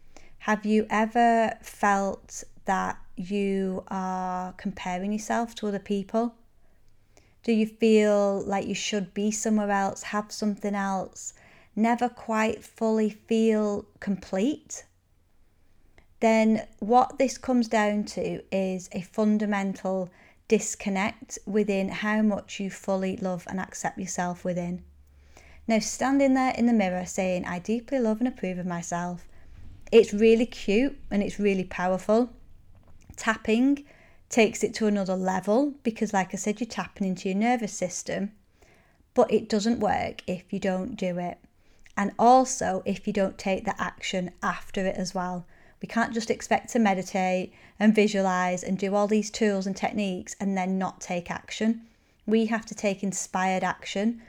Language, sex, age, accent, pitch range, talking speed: English, female, 30-49, British, 185-220 Hz, 145 wpm